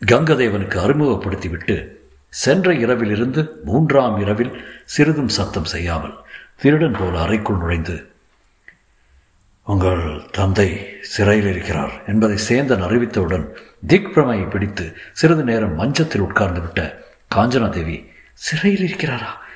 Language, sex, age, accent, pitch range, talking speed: Tamil, male, 60-79, native, 95-135 Hz, 90 wpm